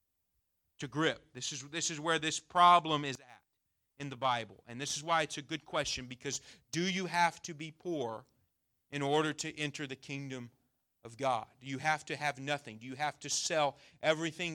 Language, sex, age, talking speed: English, male, 40-59, 200 wpm